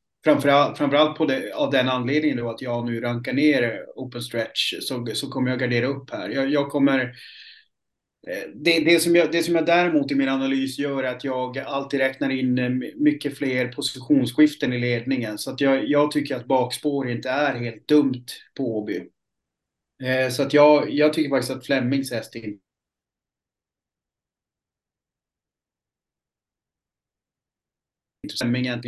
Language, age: Swedish, 30-49